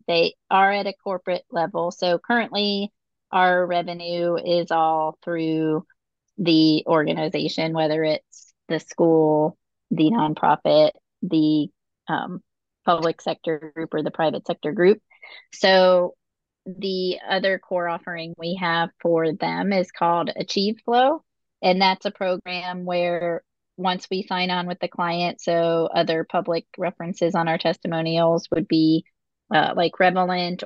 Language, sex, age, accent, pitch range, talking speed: English, female, 30-49, American, 165-190 Hz, 135 wpm